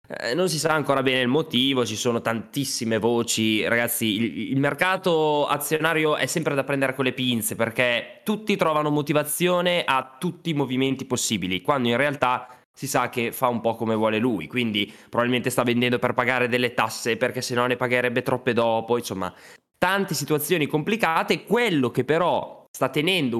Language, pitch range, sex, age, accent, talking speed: Italian, 105-135 Hz, male, 20-39, native, 175 wpm